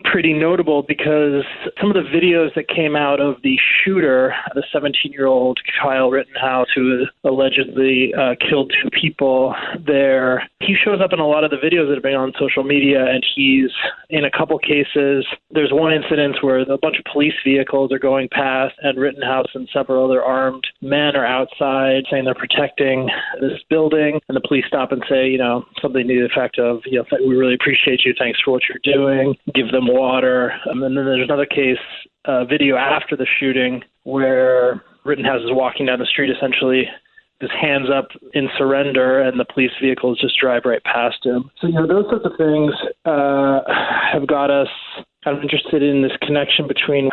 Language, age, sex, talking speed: English, 20-39, male, 190 wpm